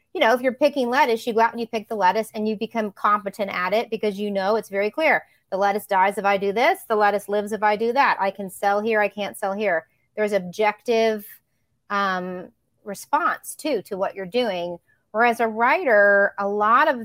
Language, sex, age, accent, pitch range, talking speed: English, female, 30-49, American, 190-235 Hz, 220 wpm